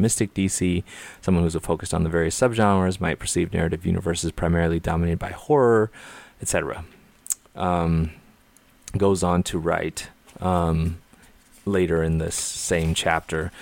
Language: English